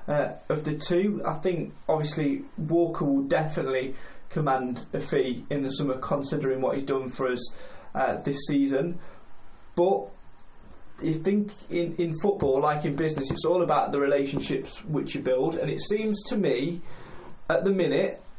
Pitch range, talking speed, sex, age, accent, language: 140-175 Hz, 165 wpm, male, 20-39, British, English